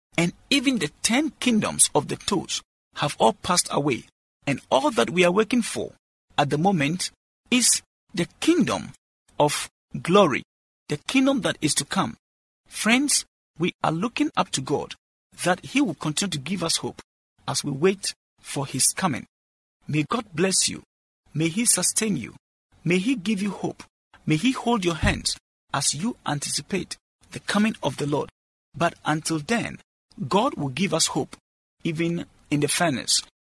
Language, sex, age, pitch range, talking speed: English, male, 50-69, 145-220 Hz, 165 wpm